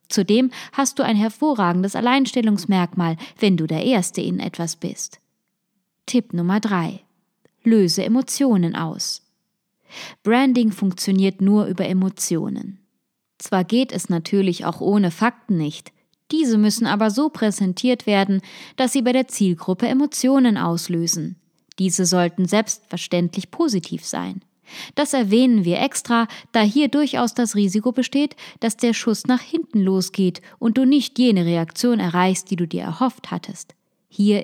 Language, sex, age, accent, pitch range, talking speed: German, female, 20-39, German, 185-245 Hz, 135 wpm